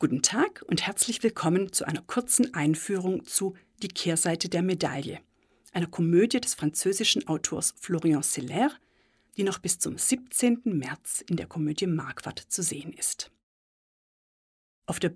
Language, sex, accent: German, female, German